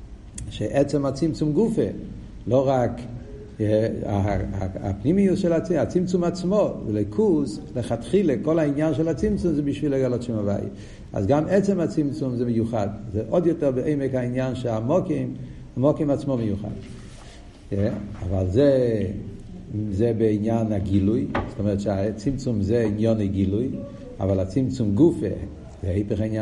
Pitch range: 105-155 Hz